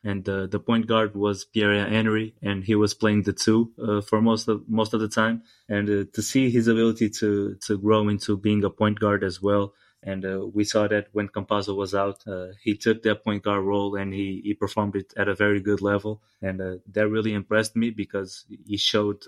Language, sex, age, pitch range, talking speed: English, male, 20-39, 100-110 Hz, 225 wpm